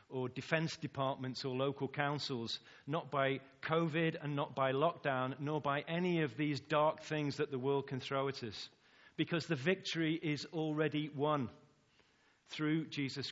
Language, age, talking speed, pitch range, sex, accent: English, 40-59, 160 wpm, 110-140 Hz, male, British